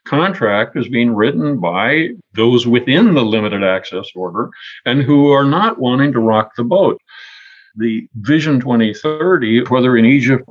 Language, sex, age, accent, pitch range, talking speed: English, male, 50-69, American, 120-165 Hz, 150 wpm